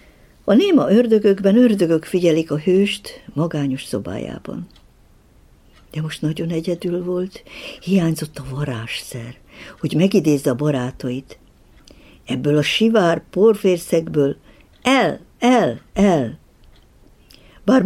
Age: 60-79